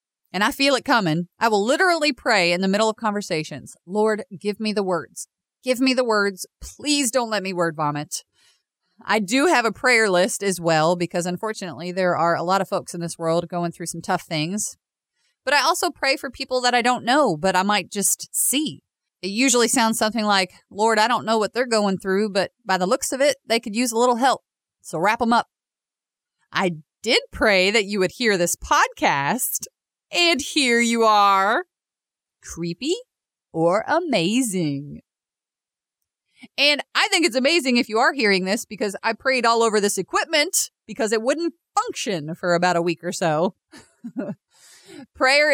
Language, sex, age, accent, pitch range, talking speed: English, female, 30-49, American, 185-255 Hz, 185 wpm